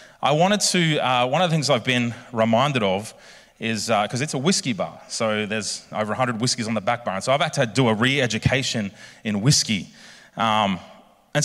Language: English